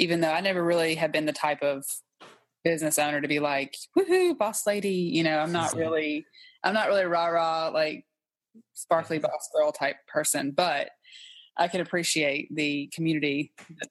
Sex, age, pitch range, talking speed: female, 20-39, 150-180 Hz, 175 wpm